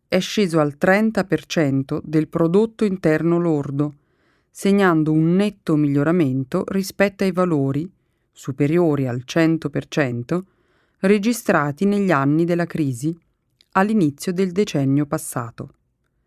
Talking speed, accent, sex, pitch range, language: 100 wpm, native, female, 145-190 Hz, Italian